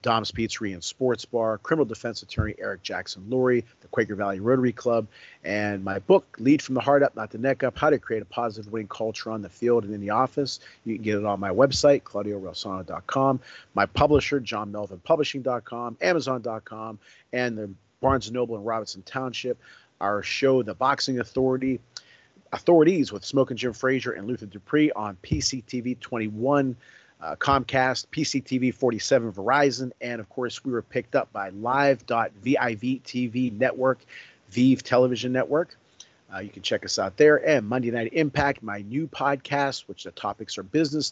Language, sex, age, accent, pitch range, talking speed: English, male, 40-59, American, 110-135 Hz, 170 wpm